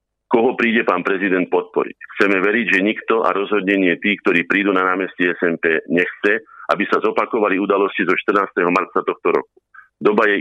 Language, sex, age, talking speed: Slovak, male, 50-69, 165 wpm